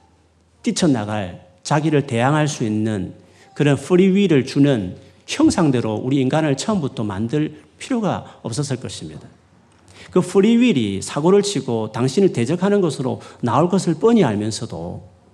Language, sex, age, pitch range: Korean, male, 40-59, 110-180 Hz